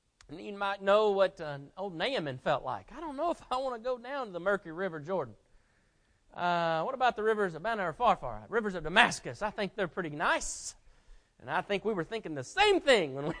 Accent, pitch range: American, 165-235 Hz